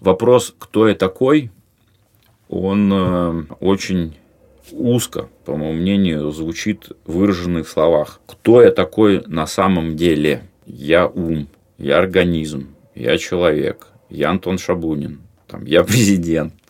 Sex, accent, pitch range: male, native, 80-105 Hz